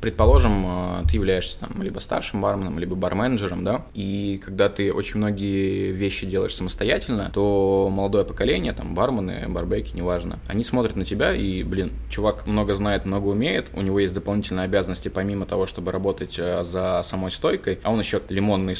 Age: 20-39